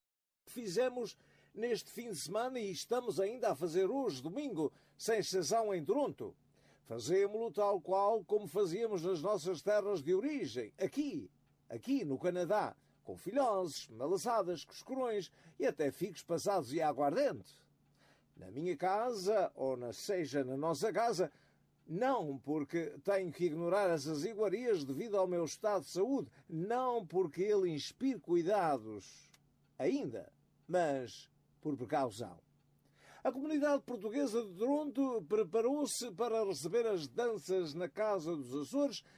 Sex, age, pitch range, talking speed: male, 50-69, 165-230 Hz, 130 wpm